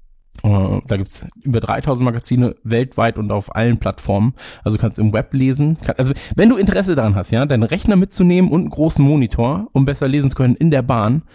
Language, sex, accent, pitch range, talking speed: German, male, German, 105-135 Hz, 215 wpm